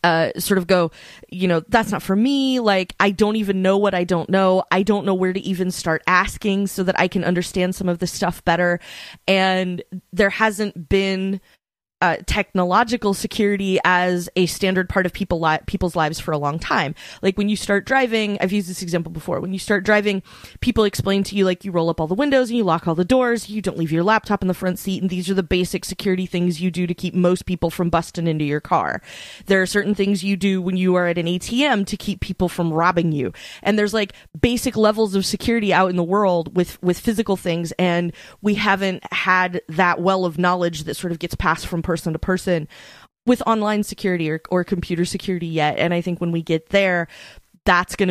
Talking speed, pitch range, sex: 225 wpm, 175-195 Hz, female